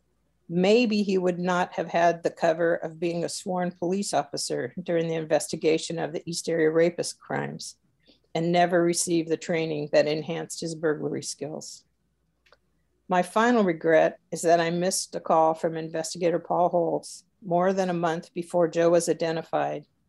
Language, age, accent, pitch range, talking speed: English, 50-69, American, 160-180 Hz, 160 wpm